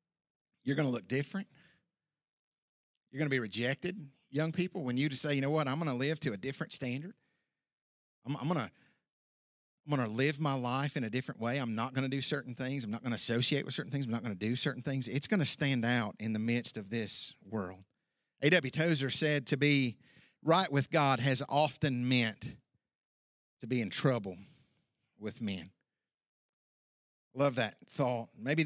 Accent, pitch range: American, 125-150 Hz